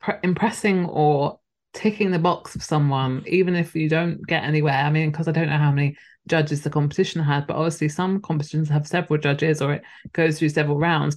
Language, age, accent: English, 20-39, British